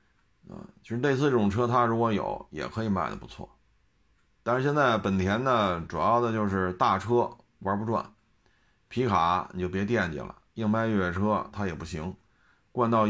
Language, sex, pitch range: Chinese, male, 100-120 Hz